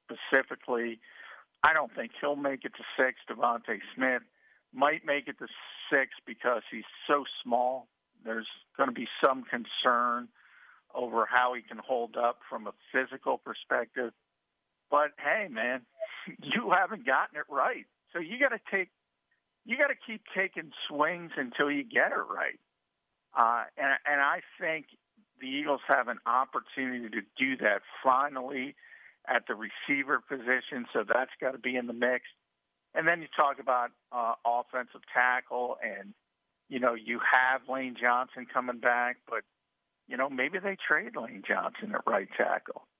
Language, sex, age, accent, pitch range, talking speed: English, male, 50-69, American, 125-190 Hz, 160 wpm